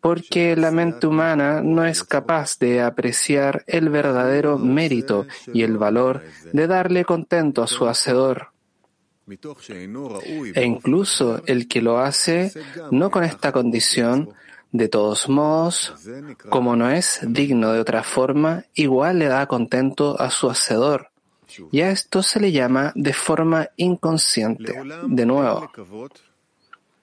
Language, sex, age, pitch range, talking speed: English, male, 30-49, 120-160 Hz, 130 wpm